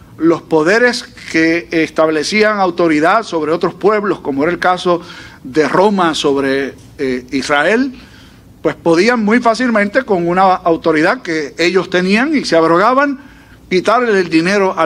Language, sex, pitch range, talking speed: Spanish, male, 170-230 Hz, 135 wpm